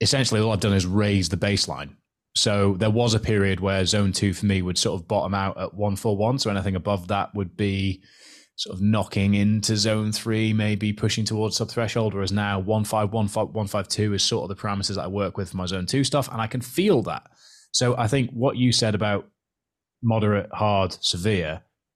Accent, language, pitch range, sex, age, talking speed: British, English, 95-115 Hz, male, 20-39, 215 wpm